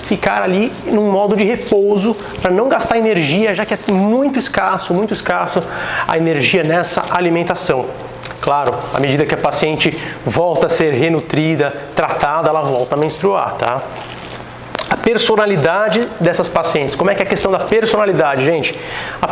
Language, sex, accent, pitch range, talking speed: Portuguese, male, Brazilian, 165-215 Hz, 160 wpm